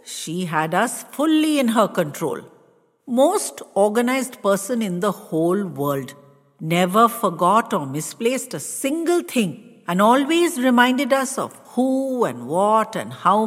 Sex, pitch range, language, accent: female, 165-235 Hz, English, Indian